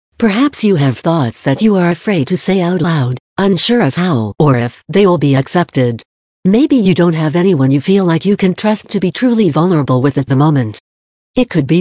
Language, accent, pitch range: English, American, 140-195 Hz